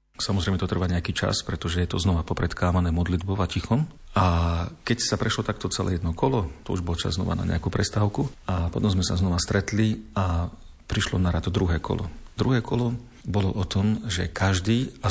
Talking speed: 195 wpm